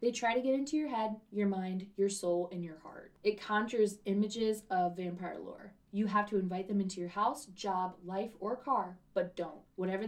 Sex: female